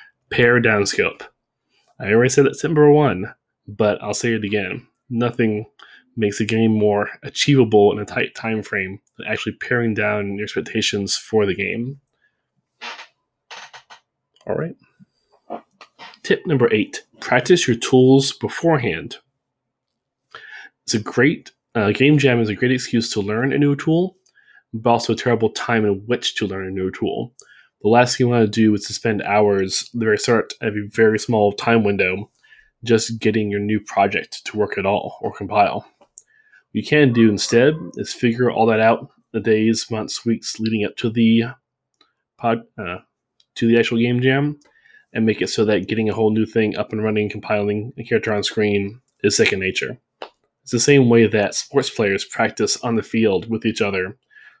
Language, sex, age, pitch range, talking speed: English, male, 20-39, 105-125 Hz, 175 wpm